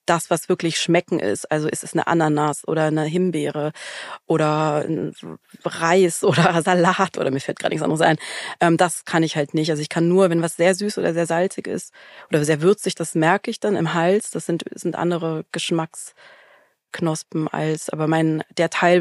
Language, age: German, 30-49